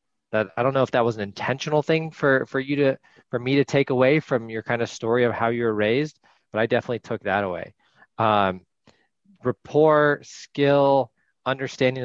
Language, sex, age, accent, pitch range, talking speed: English, male, 20-39, American, 100-120 Hz, 195 wpm